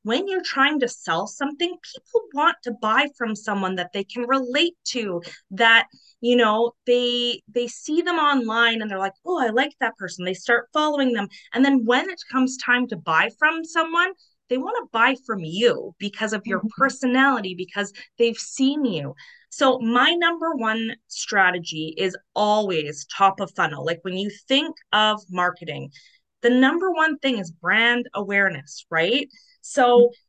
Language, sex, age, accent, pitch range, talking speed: English, female, 20-39, American, 195-270 Hz, 170 wpm